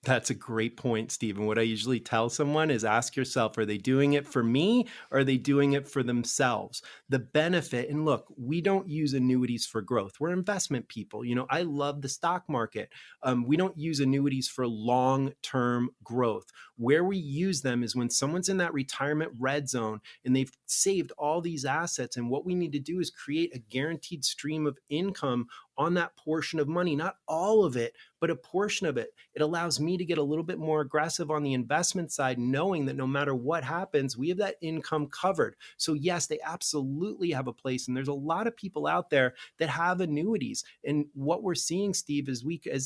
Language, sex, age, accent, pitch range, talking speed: English, male, 30-49, American, 130-165 Hz, 205 wpm